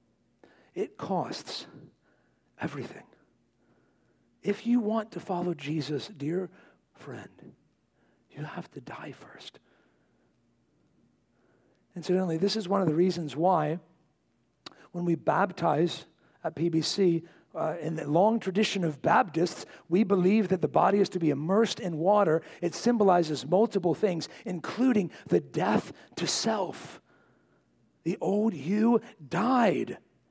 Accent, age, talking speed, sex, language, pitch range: American, 60-79, 120 wpm, male, English, 180-245 Hz